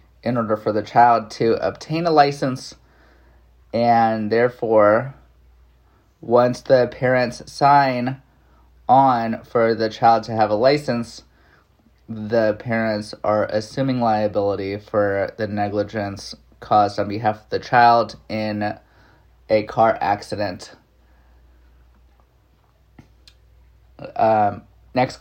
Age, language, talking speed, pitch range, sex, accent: 20-39, English, 100 wpm, 70-115 Hz, male, American